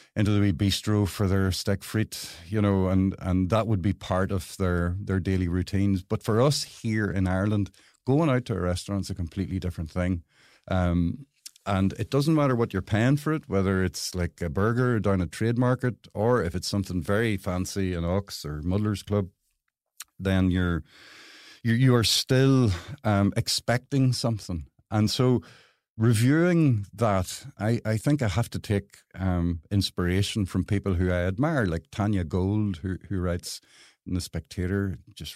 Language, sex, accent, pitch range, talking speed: English, male, Irish, 90-110 Hz, 175 wpm